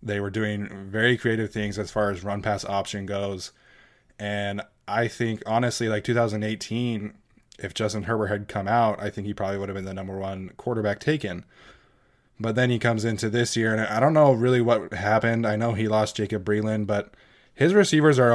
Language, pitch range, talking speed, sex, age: English, 105-115 Hz, 195 wpm, male, 20-39